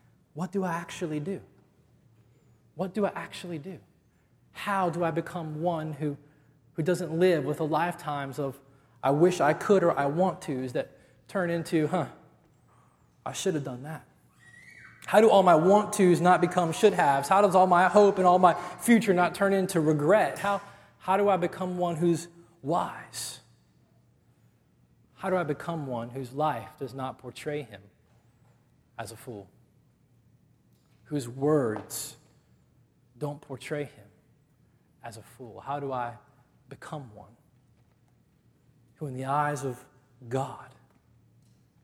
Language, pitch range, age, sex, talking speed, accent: English, 125-170 Hz, 20-39, male, 150 wpm, American